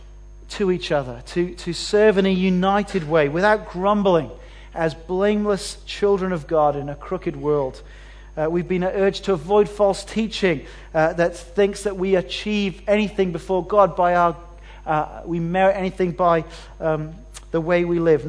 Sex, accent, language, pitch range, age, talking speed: male, British, English, 155-200 Hz, 40-59, 165 wpm